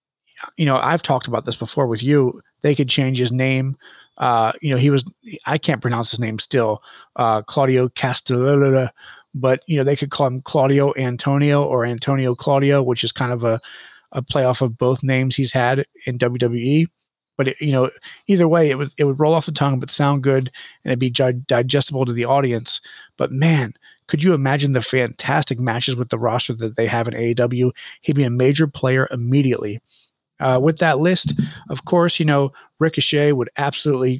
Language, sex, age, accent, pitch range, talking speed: English, male, 30-49, American, 125-145 Hz, 195 wpm